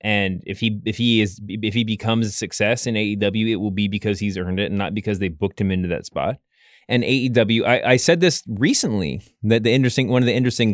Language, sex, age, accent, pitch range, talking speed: English, male, 20-39, American, 105-130 Hz, 240 wpm